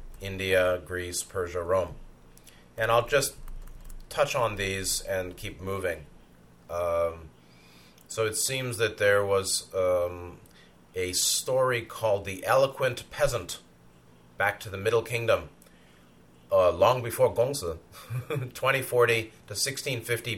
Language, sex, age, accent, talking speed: English, male, 30-49, American, 115 wpm